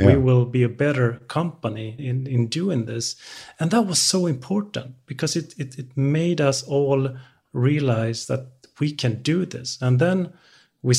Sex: male